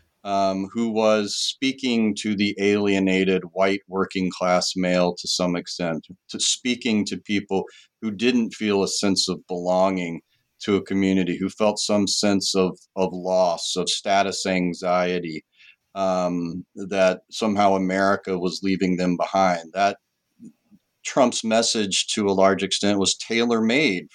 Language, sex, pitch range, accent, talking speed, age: English, male, 95-110 Hz, American, 140 wpm, 40-59